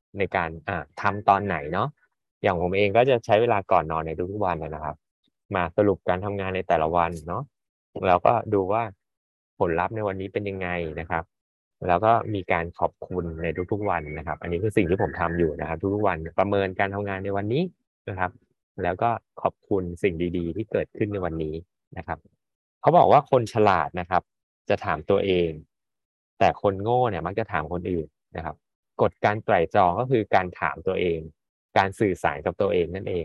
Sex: male